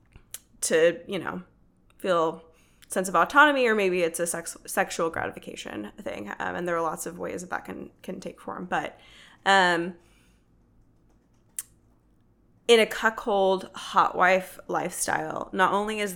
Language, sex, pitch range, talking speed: English, female, 165-195 Hz, 145 wpm